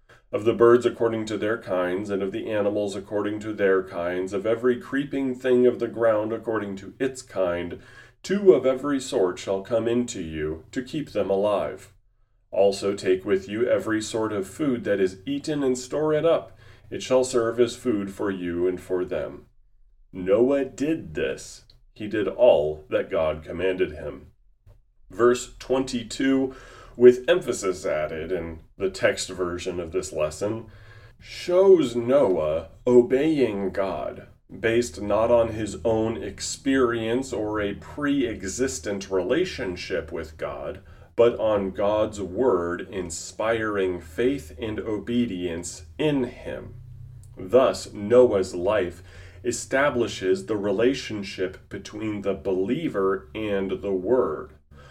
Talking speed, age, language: 135 wpm, 30-49, English